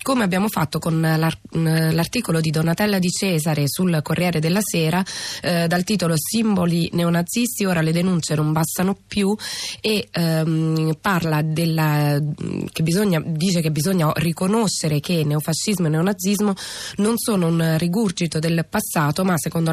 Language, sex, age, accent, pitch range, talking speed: Italian, female, 20-39, native, 155-190 Hz, 140 wpm